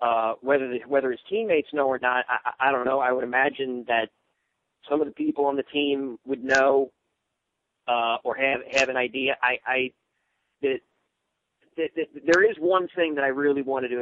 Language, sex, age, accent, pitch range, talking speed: English, male, 40-59, American, 125-155 Hz, 200 wpm